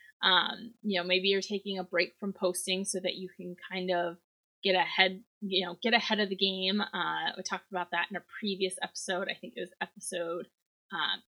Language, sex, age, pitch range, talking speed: English, female, 20-39, 185-235 Hz, 215 wpm